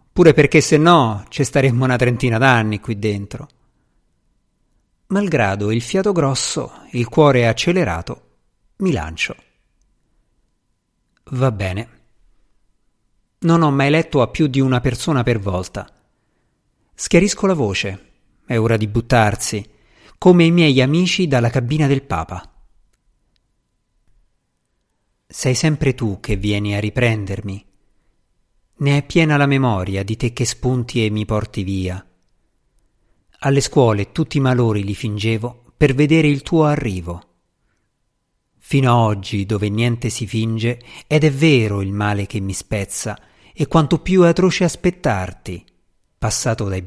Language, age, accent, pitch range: Italian, 50-69, native, 100-140 Hz